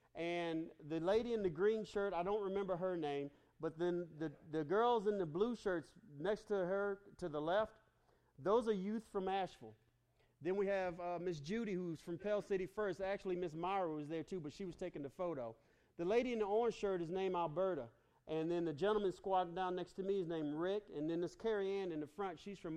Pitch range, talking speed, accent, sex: 165-200 Hz, 225 wpm, American, male